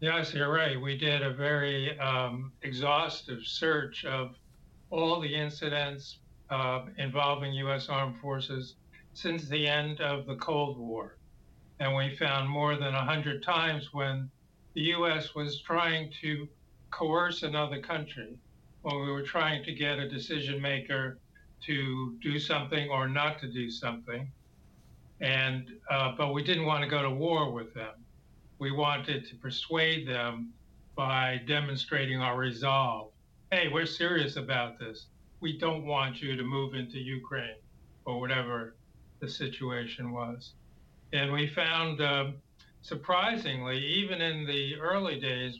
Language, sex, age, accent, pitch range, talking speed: English, male, 60-79, American, 125-150 Hz, 145 wpm